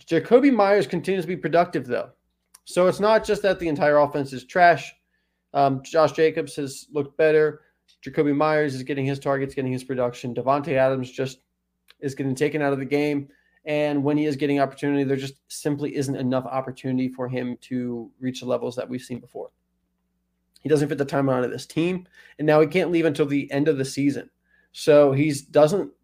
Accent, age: American, 20-39